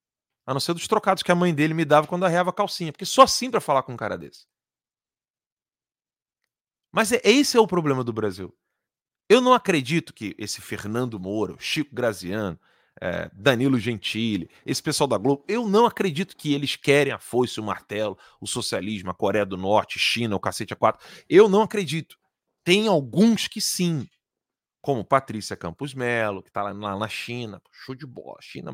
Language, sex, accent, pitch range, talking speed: Portuguese, male, Brazilian, 115-185 Hz, 185 wpm